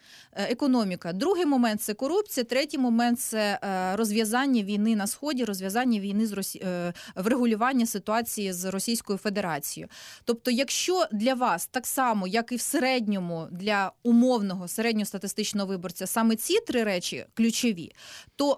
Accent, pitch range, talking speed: native, 205-275 Hz, 130 wpm